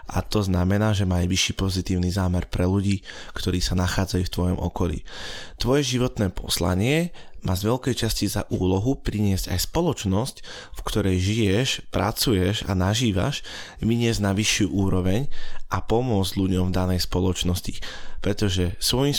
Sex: male